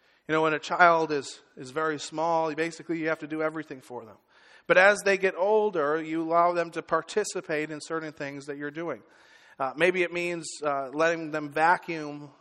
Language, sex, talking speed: English, male, 200 wpm